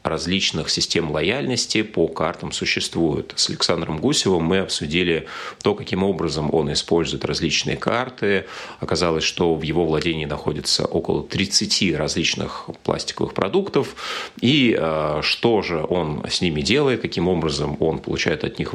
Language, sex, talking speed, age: Russian, male, 135 wpm, 30-49